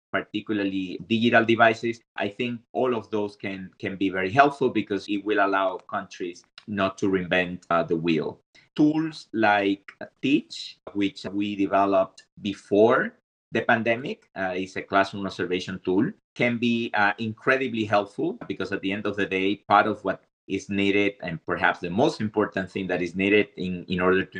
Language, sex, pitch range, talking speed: English, male, 95-115 Hz, 170 wpm